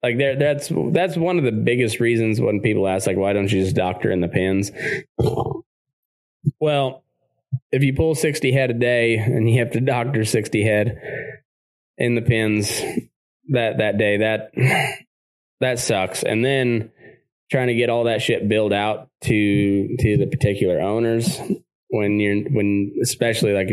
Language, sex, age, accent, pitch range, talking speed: English, male, 20-39, American, 95-125 Hz, 165 wpm